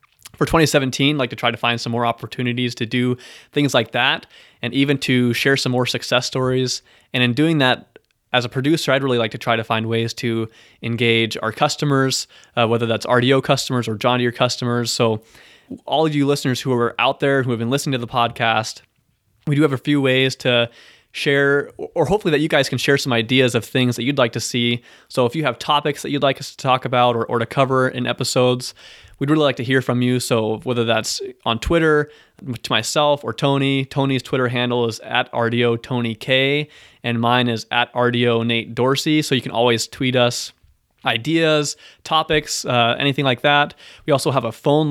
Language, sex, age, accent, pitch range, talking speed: English, male, 20-39, American, 120-140 Hz, 210 wpm